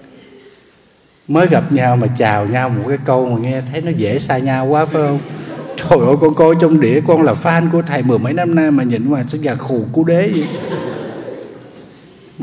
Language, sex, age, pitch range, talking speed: Vietnamese, male, 60-79, 120-160 Hz, 210 wpm